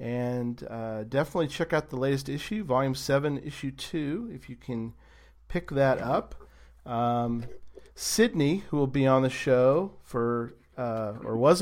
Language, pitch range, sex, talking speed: English, 110-135 Hz, male, 155 wpm